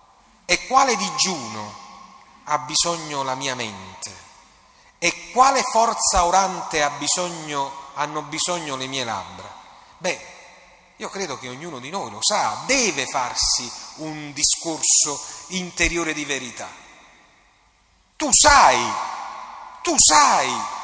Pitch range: 150-245 Hz